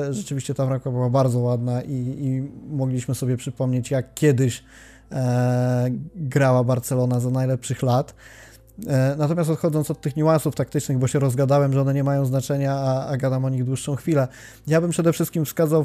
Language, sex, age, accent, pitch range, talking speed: Polish, male, 20-39, native, 135-165 Hz, 175 wpm